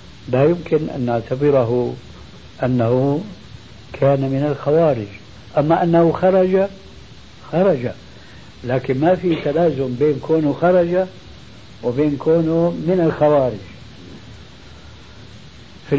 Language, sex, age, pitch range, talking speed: Arabic, male, 70-89, 115-160 Hz, 90 wpm